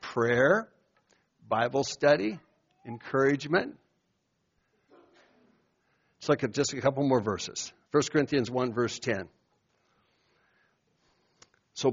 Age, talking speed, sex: 60-79, 85 wpm, male